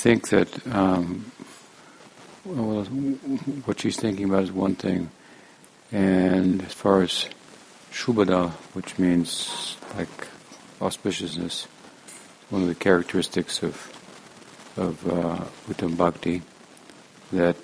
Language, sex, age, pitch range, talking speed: English, male, 60-79, 90-100 Hz, 100 wpm